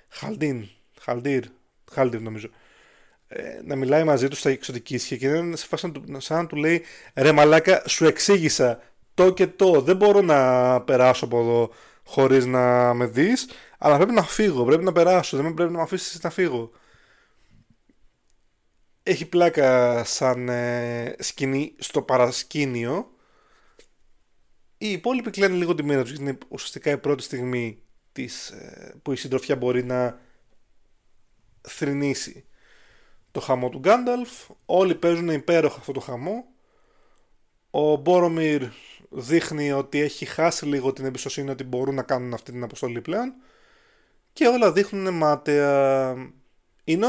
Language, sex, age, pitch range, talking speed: Greek, male, 20-39, 125-180 Hz, 135 wpm